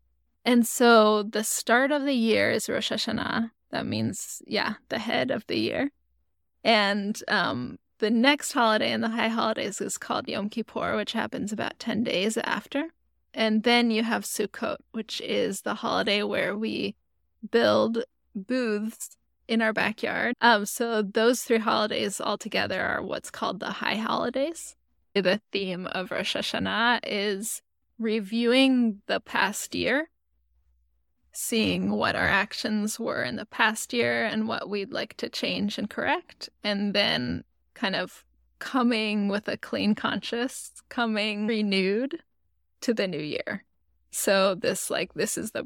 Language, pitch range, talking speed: English, 205-240 Hz, 150 wpm